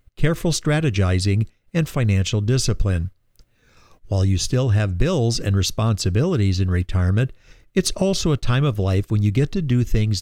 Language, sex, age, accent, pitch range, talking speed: English, male, 50-69, American, 100-135 Hz, 155 wpm